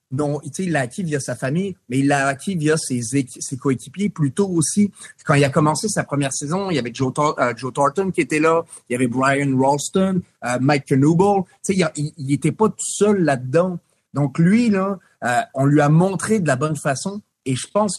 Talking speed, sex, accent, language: 235 wpm, male, French, French